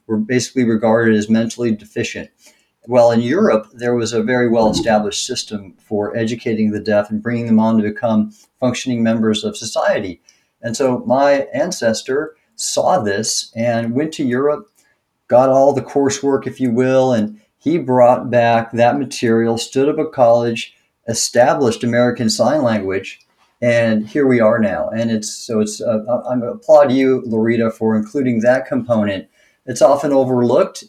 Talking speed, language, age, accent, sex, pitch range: 165 wpm, English, 50-69, American, male, 110-135 Hz